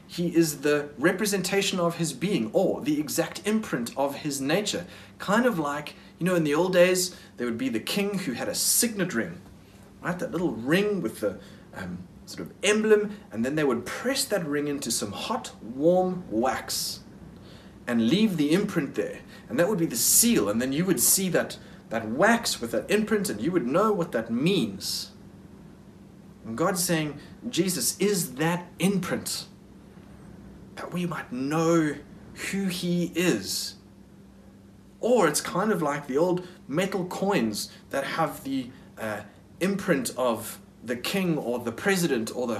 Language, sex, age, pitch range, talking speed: English, male, 30-49, 145-195 Hz, 170 wpm